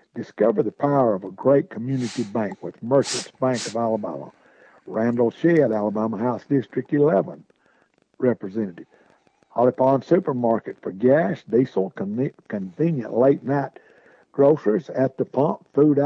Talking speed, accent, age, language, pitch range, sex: 125 wpm, American, 60-79, English, 120-150 Hz, male